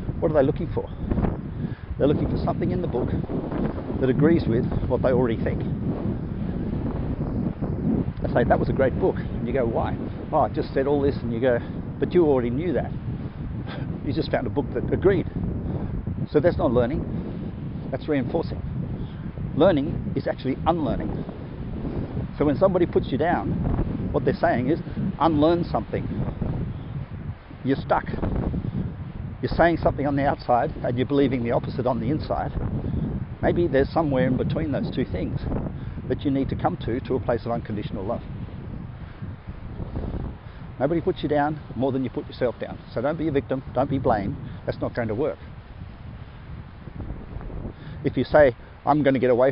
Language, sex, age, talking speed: English, male, 50-69, 170 wpm